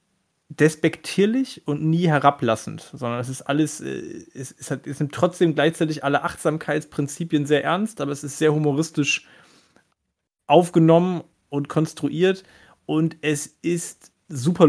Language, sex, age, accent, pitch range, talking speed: German, male, 30-49, German, 125-160 Hz, 130 wpm